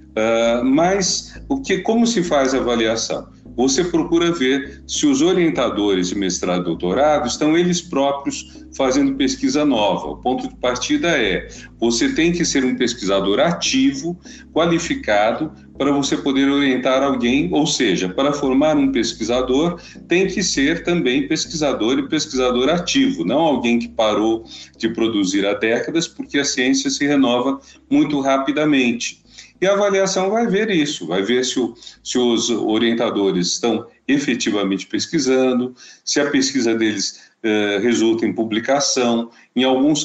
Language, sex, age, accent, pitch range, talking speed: Portuguese, male, 40-59, Brazilian, 115-180 Hz, 140 wpm